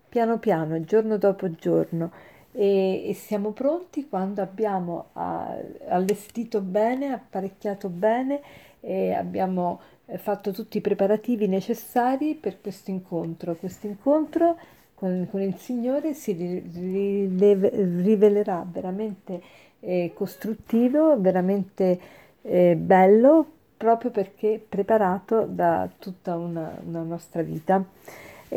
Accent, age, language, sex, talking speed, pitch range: native, 50-69, Italian, female, 100 wpm, 185-225 Hz